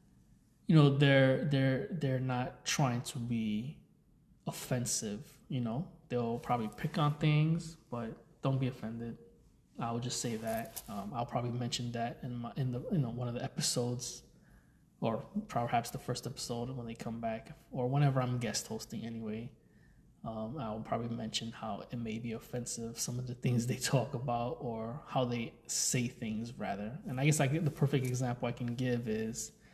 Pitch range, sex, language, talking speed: 115-135 Hz, male, English, 180 wpm